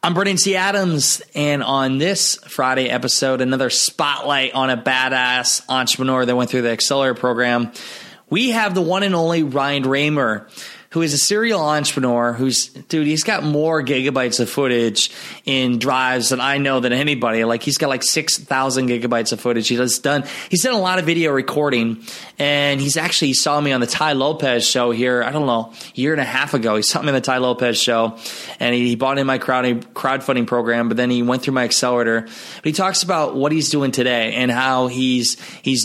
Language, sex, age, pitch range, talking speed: English, male, 20-39, 125-150 Hz, 205 wpm